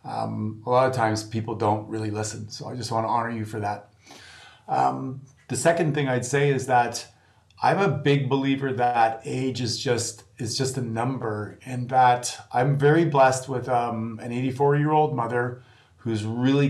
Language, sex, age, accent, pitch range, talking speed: English, male, 30-49, American, 120-150 Hz, 180 wpm